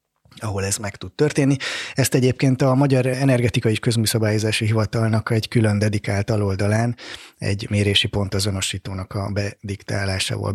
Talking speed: 125 wpm